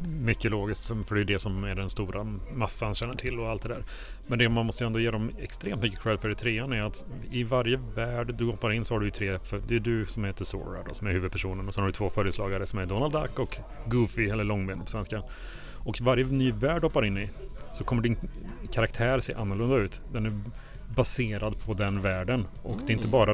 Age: 30-49